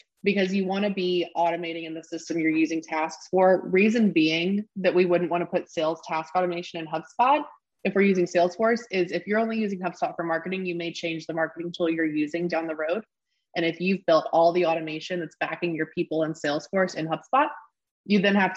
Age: 20-39